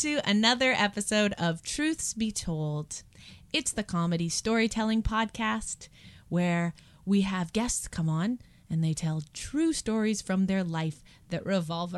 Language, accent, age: English, American, 20-39